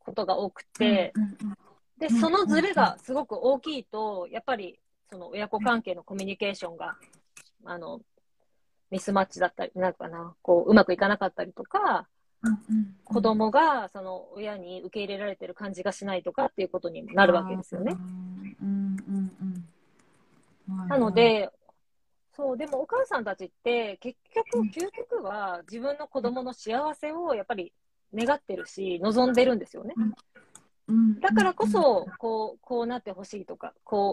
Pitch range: 190-245 Hz